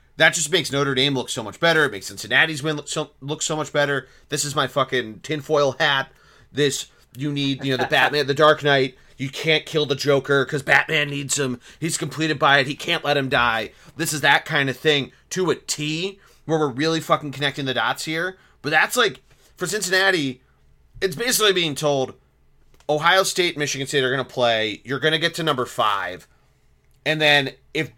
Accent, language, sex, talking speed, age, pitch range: American, English, male, 205 wpm, 30-49, 130-160 Hz